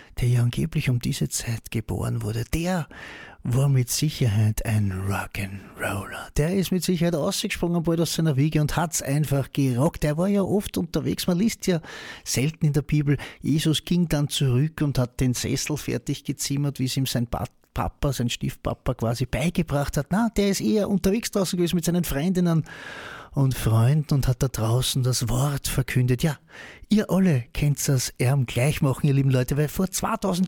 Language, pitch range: German, 130-175 Hz